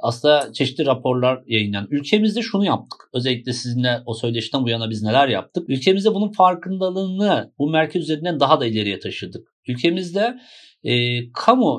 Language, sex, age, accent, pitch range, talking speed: Turkish, male, 50-69, native, 125-170 Hz, 150 wpm